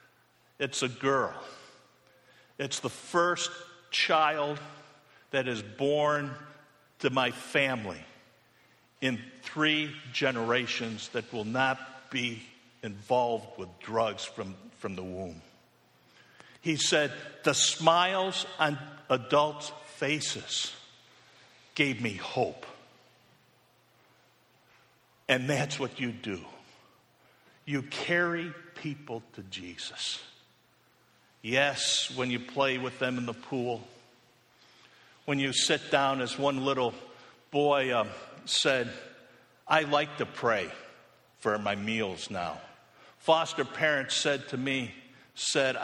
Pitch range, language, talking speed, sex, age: 120-150 Hz, English, 105 wpm, male, 60-79